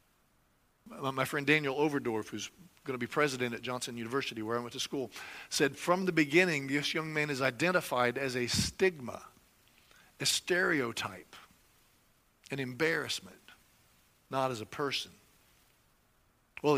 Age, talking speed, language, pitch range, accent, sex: 50-69, 135 wpm, English, 125-155 Hz, American, male